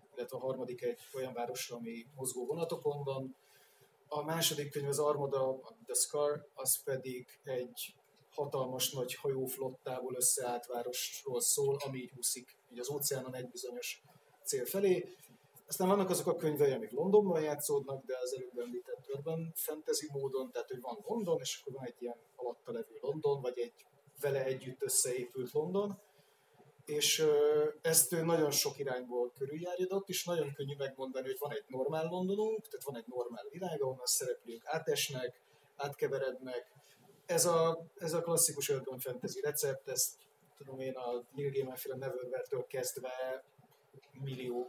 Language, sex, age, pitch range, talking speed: Hungarian, male, 30-49, 130-200 Hz, 145 wpm